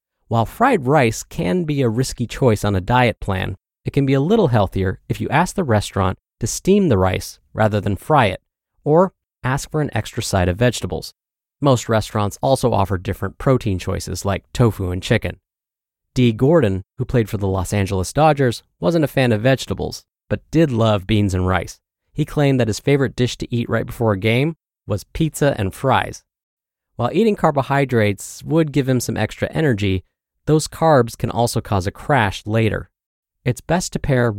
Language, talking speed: English, 185 wpm